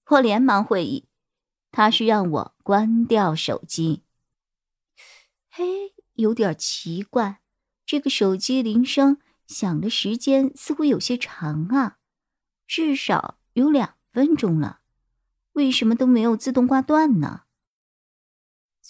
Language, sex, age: Chinese, male, 50-69